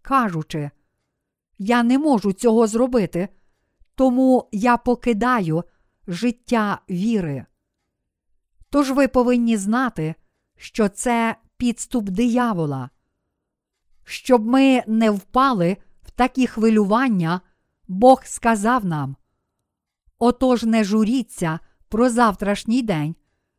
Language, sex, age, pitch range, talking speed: Ukrainian, female, 50-69, 185-255 Hz, 90 wpm